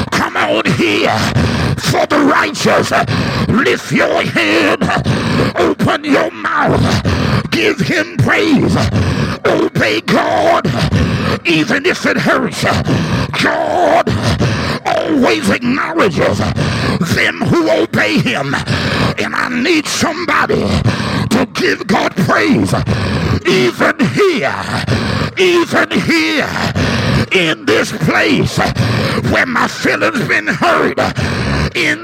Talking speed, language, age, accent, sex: 90 wpm, English, 50-69, American, male